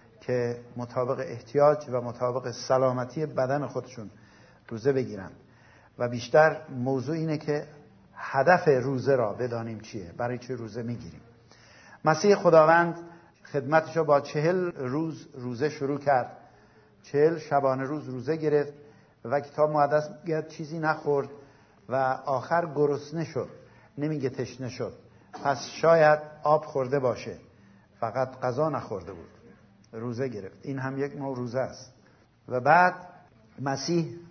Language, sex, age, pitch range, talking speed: Persian, male, 60-79, 120-150 Hz, 125 wpm